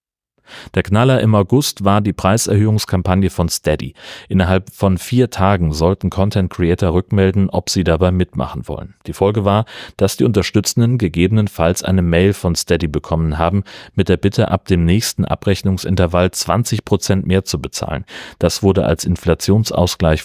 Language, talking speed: German, 150 wpm